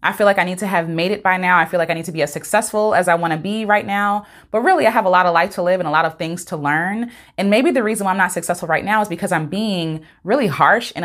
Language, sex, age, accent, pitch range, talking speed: English, female, 20-39, American, 160-210 Hz, 330 wpm